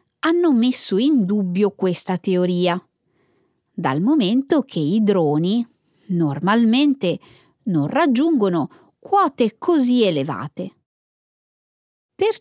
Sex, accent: female, native